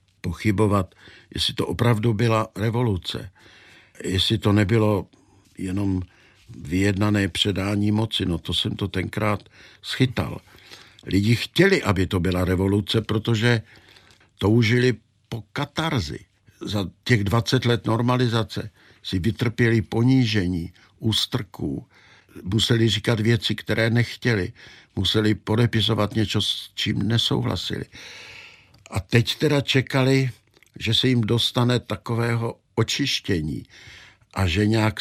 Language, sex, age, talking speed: Czech, male, 60-79, 105 wpm